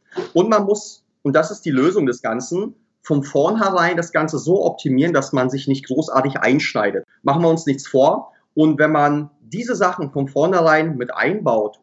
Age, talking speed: 30-49, 185 wpm